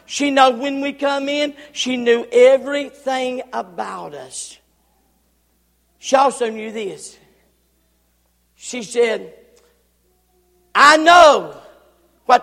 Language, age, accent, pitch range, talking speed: English, 50-69, American, 230-295 Hz, 95 wpm